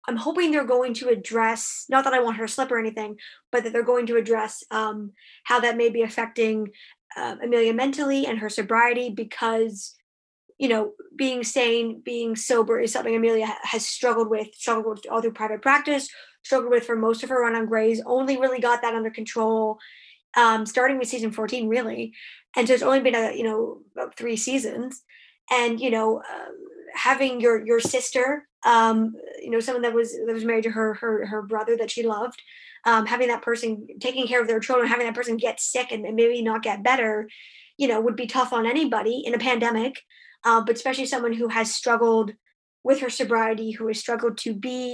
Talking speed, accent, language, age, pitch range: 200 wpm, American, English, 20-39, 225-250 Hz